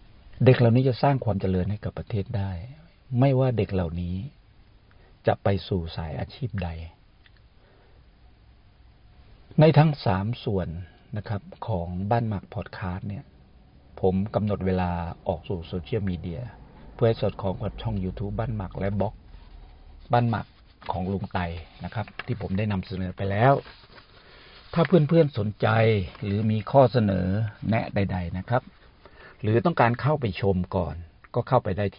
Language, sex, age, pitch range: Thai, male, 60-79, 90-115 Hz